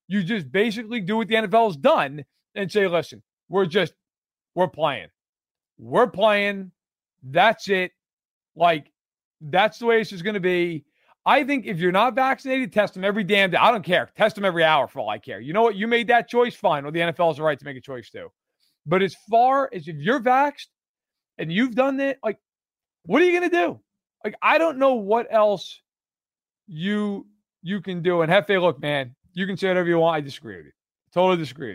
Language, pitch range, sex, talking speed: English, 170-230 Hz, male, 210 wpm